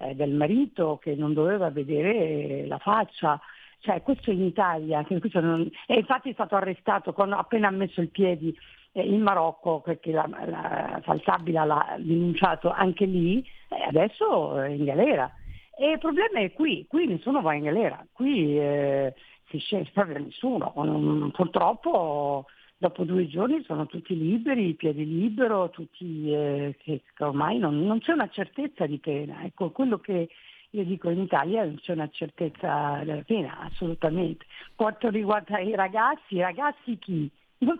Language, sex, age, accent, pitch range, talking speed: Italian, female, 50-69, native, 160-225 Hz, 160 wpm